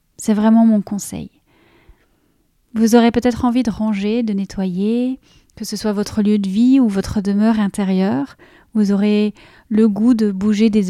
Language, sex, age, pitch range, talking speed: French, female, 30-49, 195-225 Hz, 165 wpm